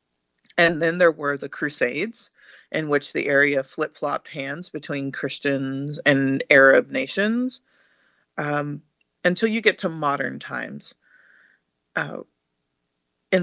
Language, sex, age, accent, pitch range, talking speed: English, female, 30-49, American, 135-165 Hz, 115 wpm